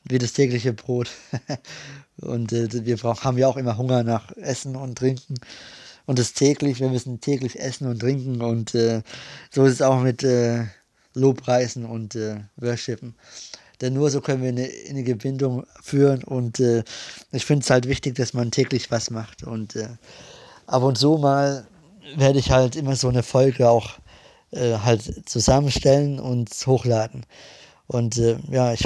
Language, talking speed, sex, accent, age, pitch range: German, 175 wpm, male, German, 20-39, 115-135 Hz